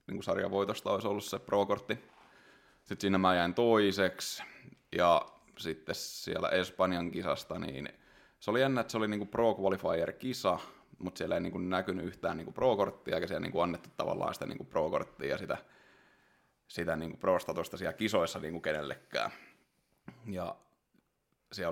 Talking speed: 150 wpm